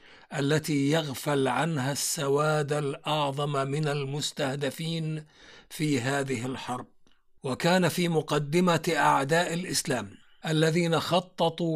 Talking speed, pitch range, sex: 85 wpm, 140-160 Hz, male